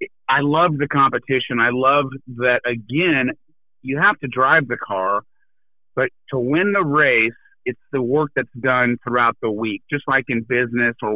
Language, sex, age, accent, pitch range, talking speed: English, male, 40-59, American, 120-150 Hz, 170 wpm